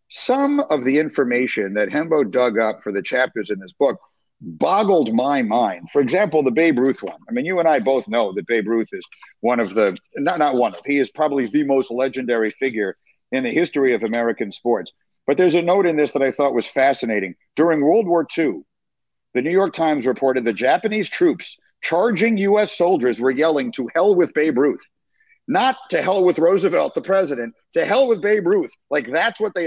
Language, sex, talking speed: English, male, 210 wpm